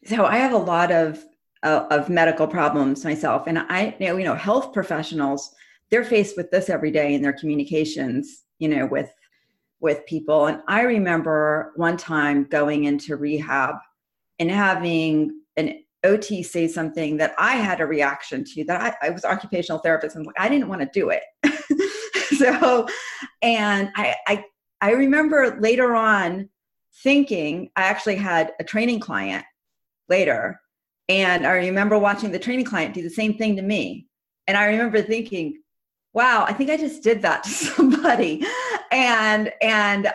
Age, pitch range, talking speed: 40-59, 165-255 Hz, 165 wpm